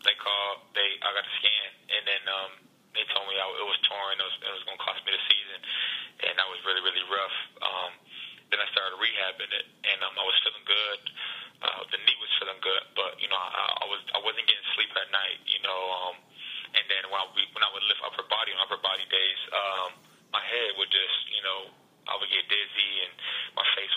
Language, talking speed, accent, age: English, 235 wpm, American, 20-39